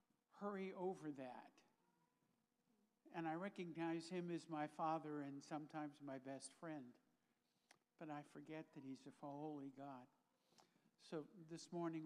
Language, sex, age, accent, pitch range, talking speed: English, male, 60-79, American, 140-170 Hz, 130 wpm